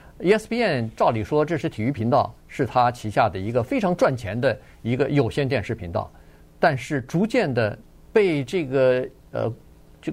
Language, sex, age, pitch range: Chinese, male, 50-69, 120-180 Hz